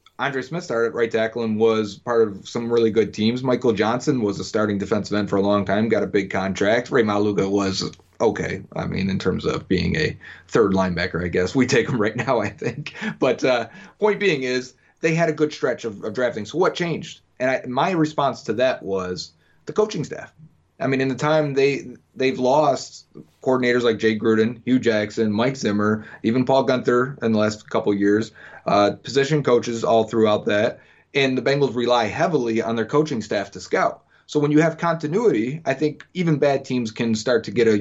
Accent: American